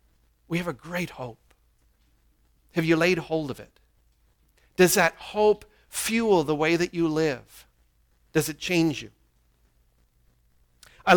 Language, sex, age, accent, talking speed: English, male, 40-59, American, 135 wpm